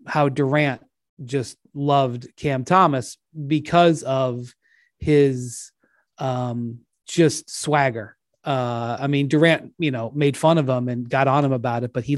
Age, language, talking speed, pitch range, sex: 30-49, English, 150 wpm, 125-150 Hz, male